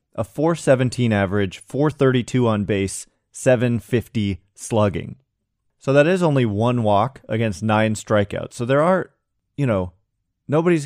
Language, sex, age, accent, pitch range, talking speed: English, male, 30-49, American, 105-135 Hz, 125 wpm